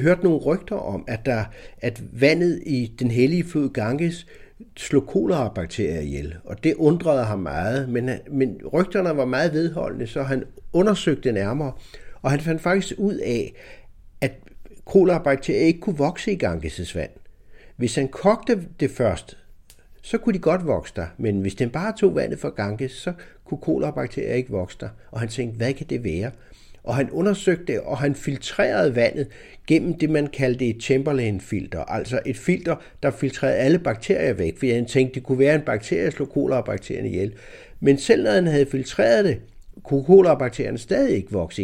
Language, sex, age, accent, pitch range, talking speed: Danish, male, 60-79, native, 115-170 Hz, 180 wpm